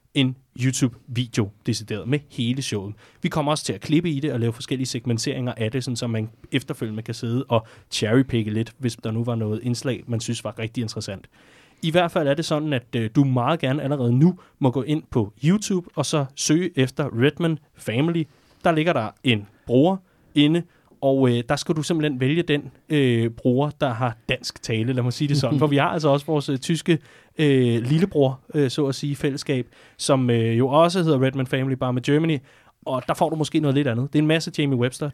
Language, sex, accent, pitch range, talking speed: Danish, male, native, 120-150 Hz, 220 wpm